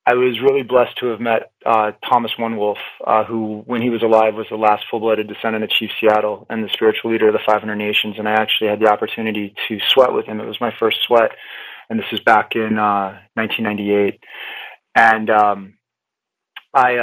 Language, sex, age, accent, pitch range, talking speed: English, male, 30-49, American, 105-120 Hz, 195 wpm